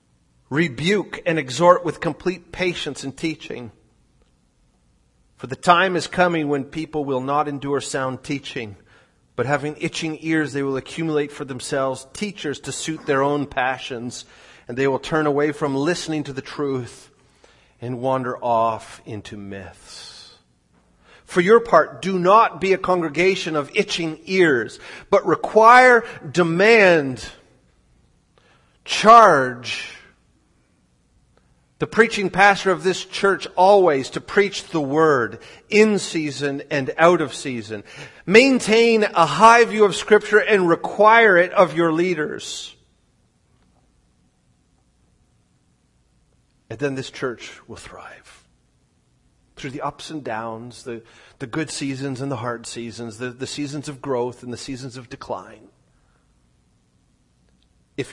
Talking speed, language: 130 wpm, English